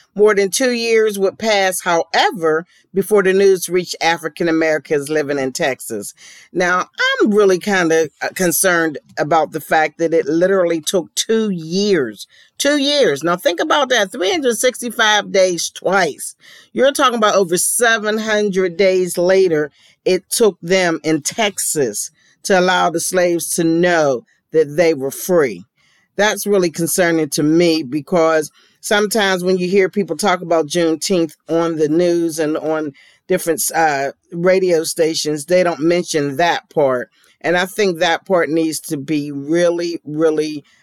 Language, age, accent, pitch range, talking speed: English, 40-59, American, 155-195 Hz, 145 wpm